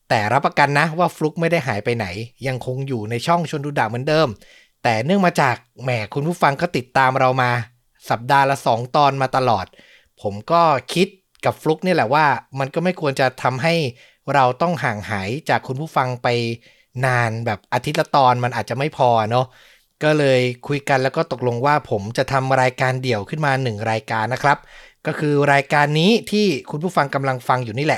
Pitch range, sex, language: 130-165 Hz, male, Thai